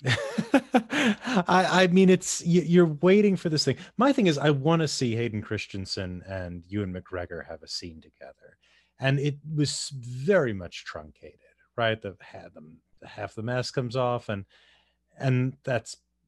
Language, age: English, 30-49